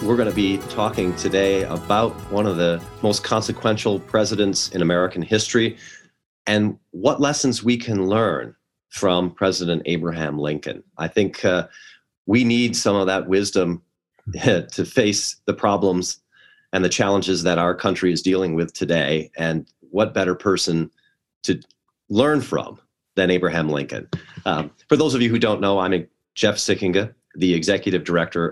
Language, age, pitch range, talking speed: English, 40-59, 85-110 Hz, 155 wpm